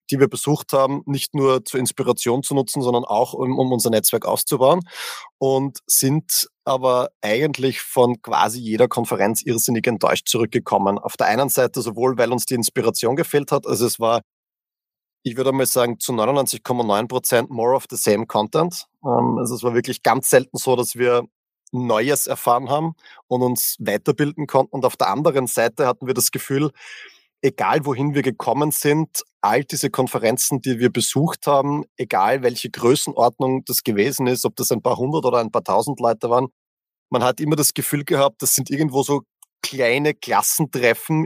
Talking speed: 175 wpm